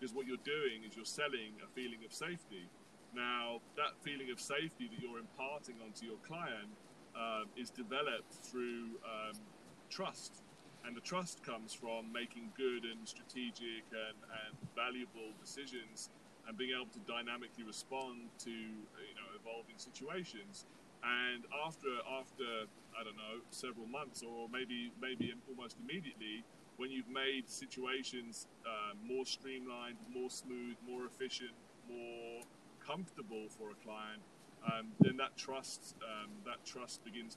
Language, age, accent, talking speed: English, 30-49, British, 145 wpm